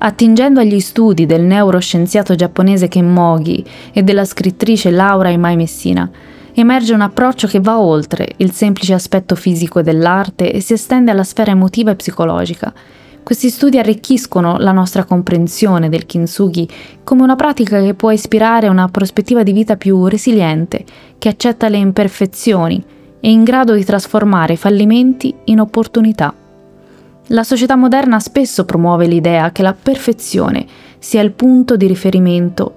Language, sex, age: Italian, female, 20-39